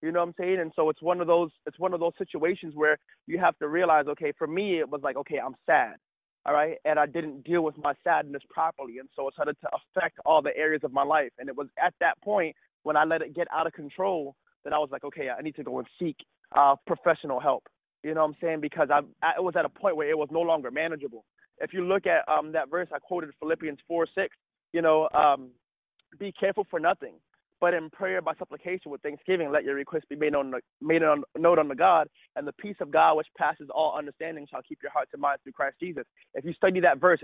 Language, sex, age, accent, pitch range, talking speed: English, male, 20-39, American, 150-175 Hz, 255 wpm